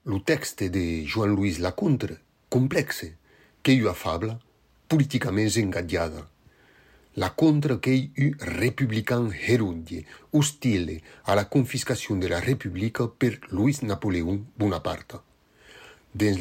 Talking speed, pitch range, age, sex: 105 wpm, 90-125 Hz, 40-59, male